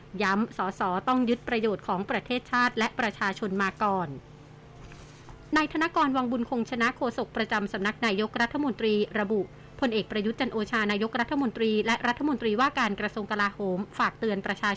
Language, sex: Thai, female